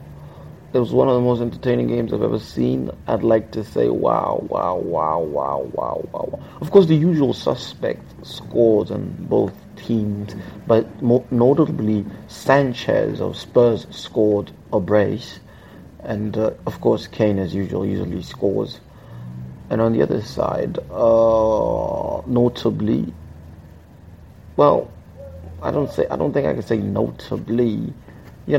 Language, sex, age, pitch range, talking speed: English, male, 30-49, 95-135 Hz, 135 wpm